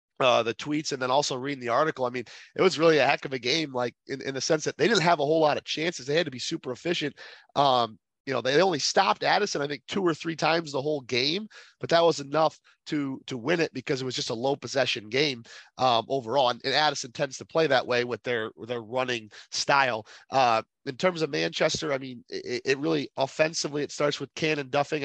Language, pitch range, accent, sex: English, 125-150 Hz, American, male